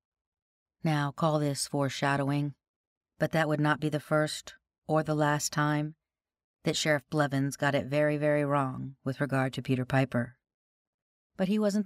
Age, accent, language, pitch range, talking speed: 40-59, American, English, 135-155 Hz, 155 wpm